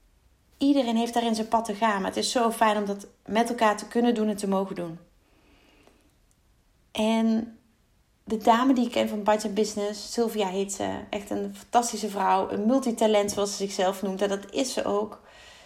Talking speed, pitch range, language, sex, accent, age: 190 wpm, 175-230 Hz, Dutch, female, Dutch, 30-49